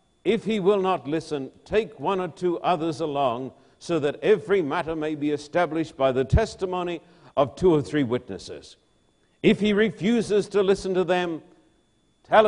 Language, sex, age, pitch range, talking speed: English, male, 60-79, 155-195 Hz, 165 wpm